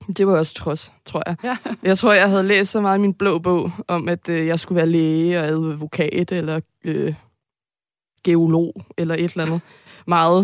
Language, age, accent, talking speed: Danish, 20-39, native, 190 wpm